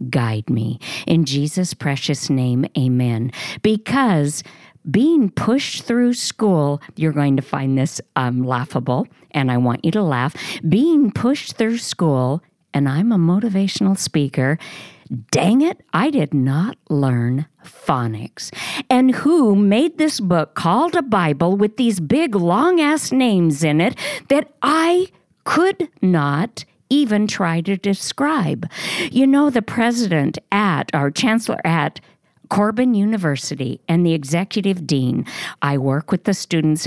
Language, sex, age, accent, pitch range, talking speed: English, female, 50-69, American, 150-235 Hz, 135 wpm